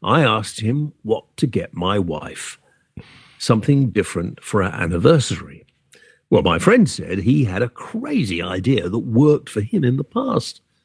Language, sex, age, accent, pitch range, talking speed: English, male, 50-69, British, 105-170 Hz, 160 wpm